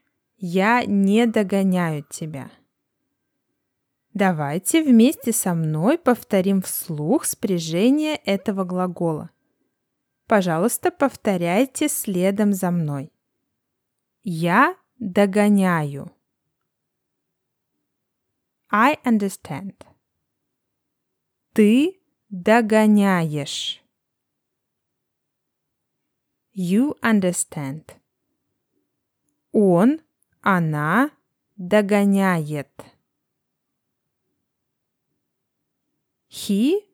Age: 20-39